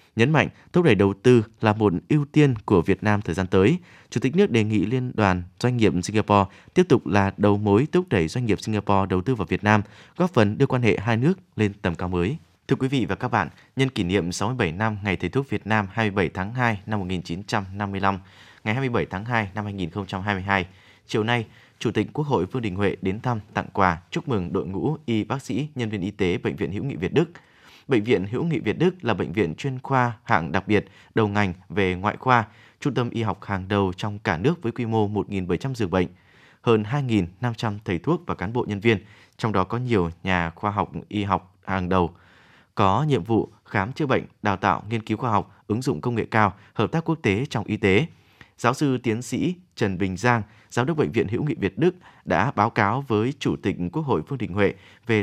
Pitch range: 95-120 Hz